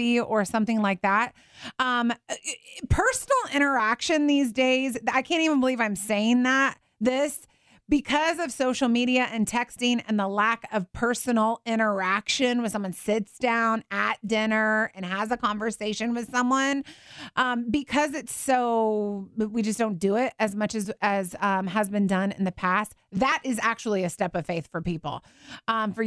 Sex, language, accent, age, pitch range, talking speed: female, English, American, 30-49, 215-270 Hz, 165 wpm